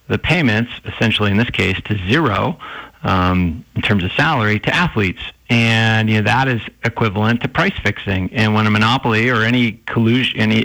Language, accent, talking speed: English, American, 180 wpm